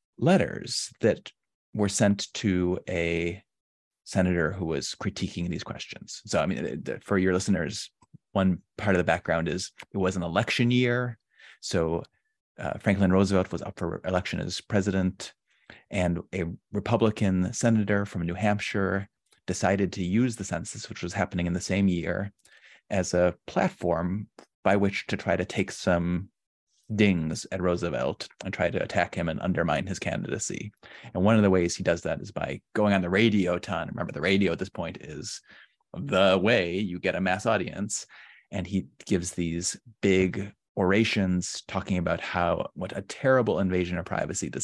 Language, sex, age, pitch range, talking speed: English, male, 30-49, 90-105 Hz, 170 wpm